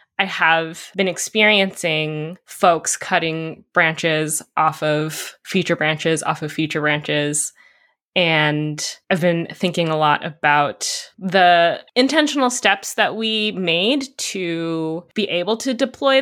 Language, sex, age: English, female, 10-29